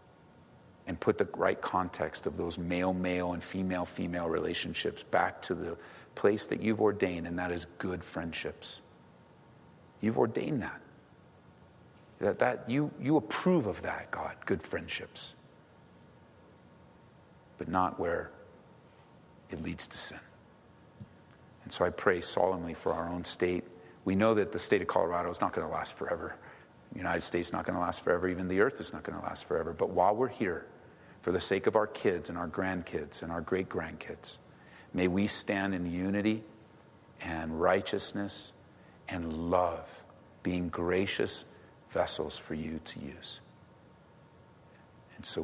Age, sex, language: 50-69, male, English